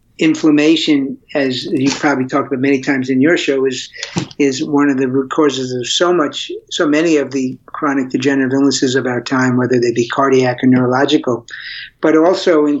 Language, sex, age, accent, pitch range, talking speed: English, male, 50-69, American, 130-145 Hz, 185 wpm